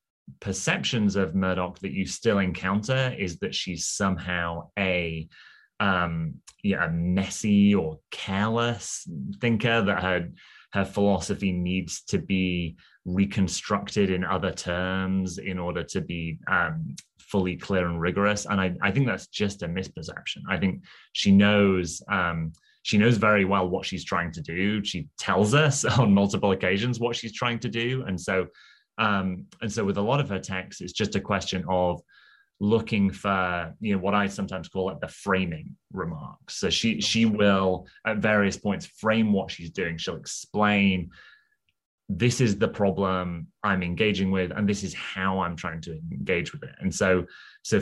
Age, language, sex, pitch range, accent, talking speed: 20-39, English, male, 90-105 Hz, British, 165 wpm